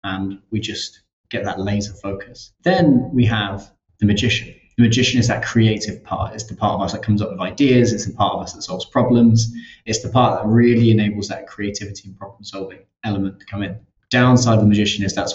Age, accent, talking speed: 20-39, British, 225 wpm